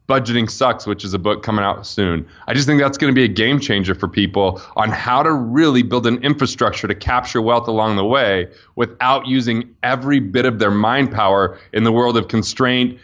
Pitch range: 105-130 Hz